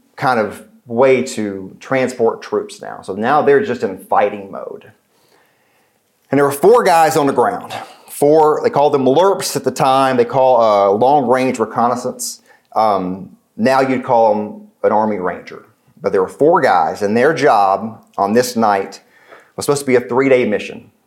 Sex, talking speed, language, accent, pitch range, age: male, 180 wpm, English, American, 110-140 Hz, 40-59